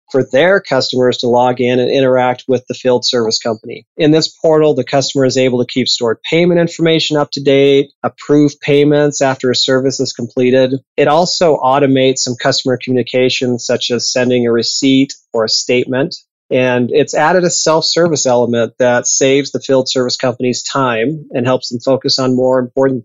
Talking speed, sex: 180 wpm, male